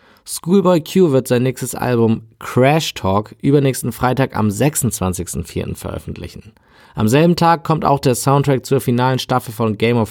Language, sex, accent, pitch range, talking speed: German, male, German, 105-145 Hz, 155 wpm